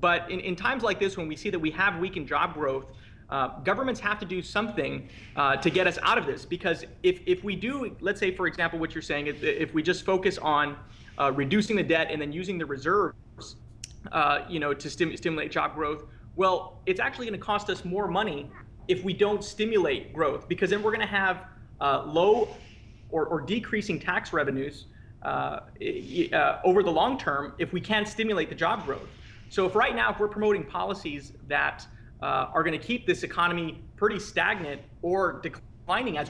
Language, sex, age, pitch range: English, male, 30-49, 155-210 Hz